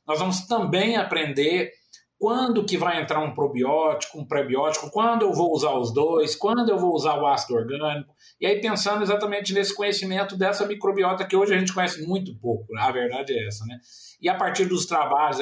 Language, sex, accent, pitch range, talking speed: Portuguese, male, Brazilian, 125-195 Hz, 200 wpm